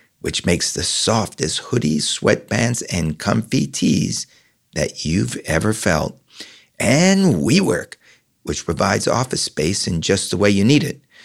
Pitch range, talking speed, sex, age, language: 95-140 Hz, 140 wpm, male, 60-79, English